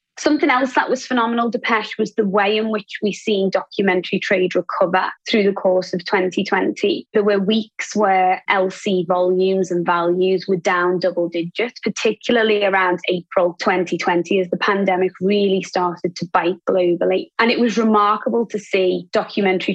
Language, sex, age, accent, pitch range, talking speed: English, female, 20-39, British, 185-220 Hz, 160 wpm